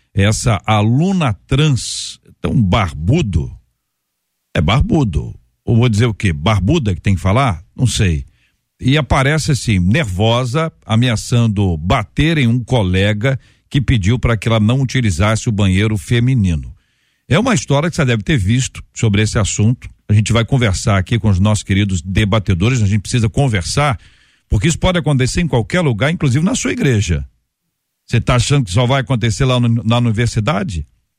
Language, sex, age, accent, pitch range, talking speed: Portuguese, male, 60-79, Brazilian, 105-135 Hz, 160 wpm